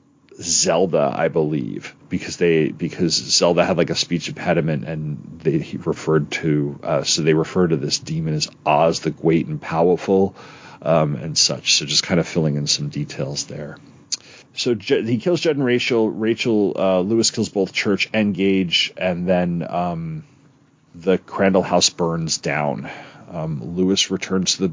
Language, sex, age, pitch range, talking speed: English, male, 40-59, 85-120 Hz, 170 wpm